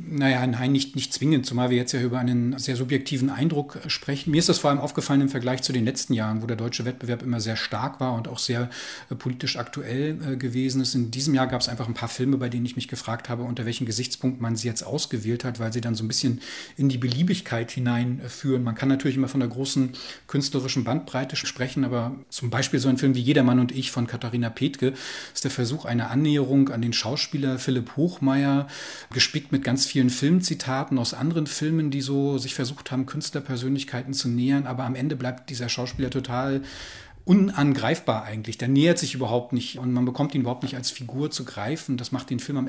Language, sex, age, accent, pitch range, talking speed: English, male, 40-59, German, 125-140 Hz, 215 wpm